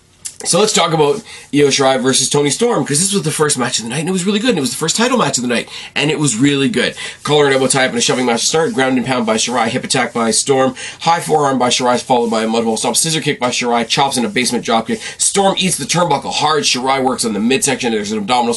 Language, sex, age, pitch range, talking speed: English, male, 30-49, 110-160 Hz, 290 wpm